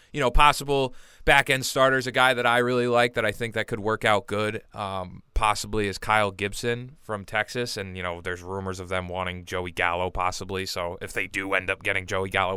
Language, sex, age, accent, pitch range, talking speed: English, male, 20-39, American, 100-120 Hz, 225 wpm